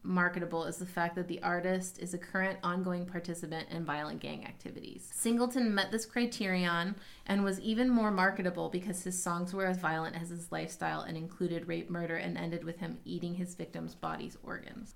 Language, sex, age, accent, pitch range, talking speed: English, female, 30-49, American, 175-205 Hz, 190 wpm